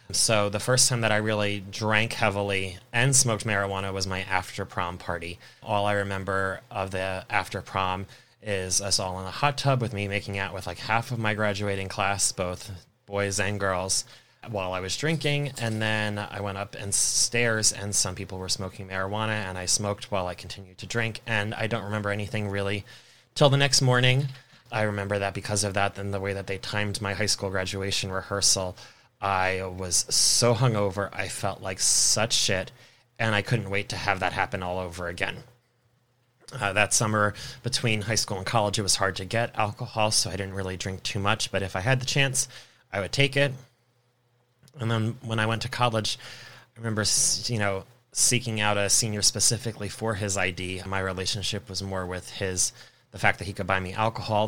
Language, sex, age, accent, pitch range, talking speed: English, male, 20-39, American, 95-115 Hz, 200 wpm